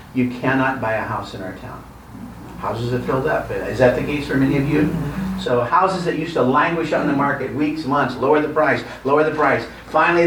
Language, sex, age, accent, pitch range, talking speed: English, male, 50-69, American, 125-155 Hz, 220 wpm